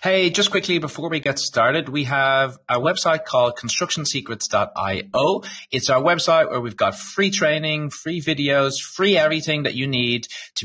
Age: 30-49